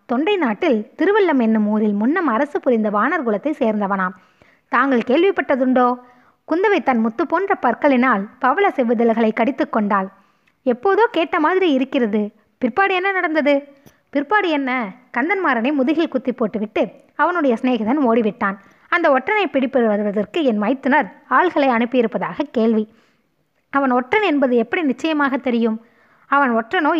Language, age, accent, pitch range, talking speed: Tamil, 20-39, native, 230-305 Hz, 120 wpm